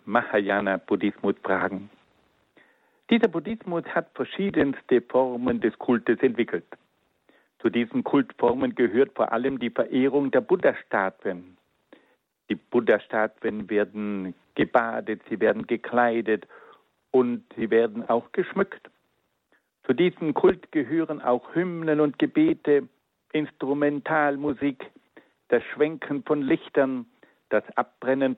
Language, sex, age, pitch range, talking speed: German, male, 60-79, 115-155 Hz, 95 wpm